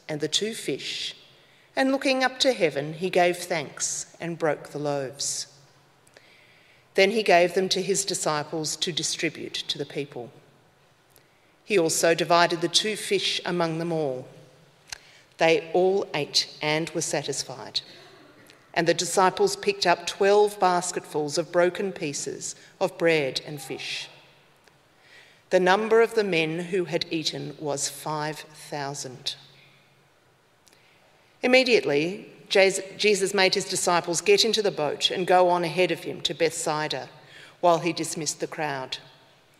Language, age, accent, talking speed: English, 40-59, Australian, 135 wpm